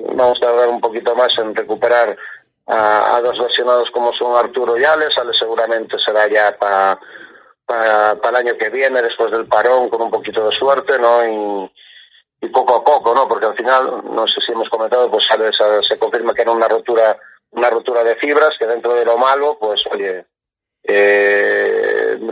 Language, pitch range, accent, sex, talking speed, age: Spanish, 115-140 Hz, Spanish, male, 190 wpm, 40-59